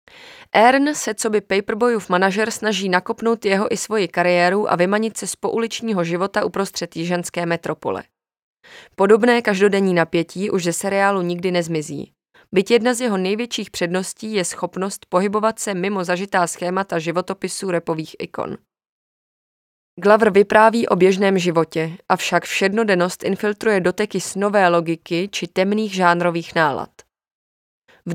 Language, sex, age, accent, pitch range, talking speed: Czech, female, 20-39, native, 180-215 Hz, 130 wpm